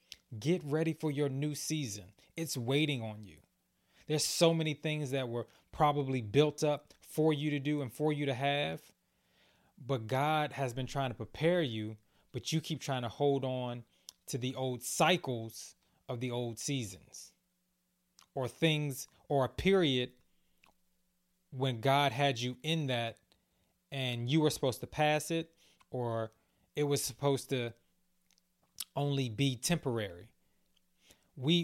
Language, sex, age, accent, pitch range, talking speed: English, male, 20-39, American, 125-160 Hz, 150 wpm